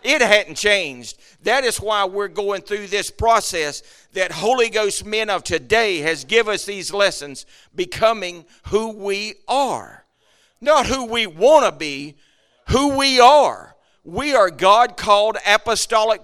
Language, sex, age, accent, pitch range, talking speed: English, male, 50-69, American, 175-225 Hz, 150 wpm